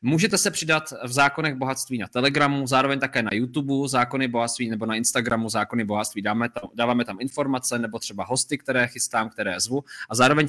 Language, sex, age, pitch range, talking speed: Czech, male, 20-39, 115-135 Hz, 185 wpm